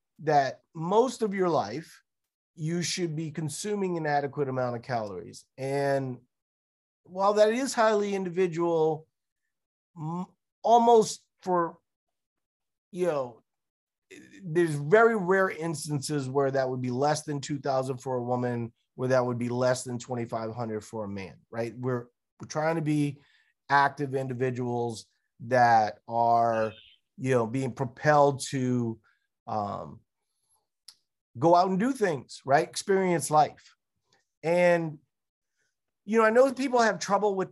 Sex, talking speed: male, 130 wpm